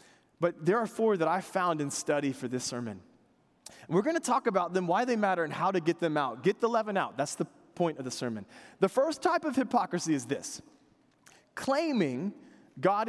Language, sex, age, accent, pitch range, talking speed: English, male, 20-39, American, 140-205 Hz, 210 wpm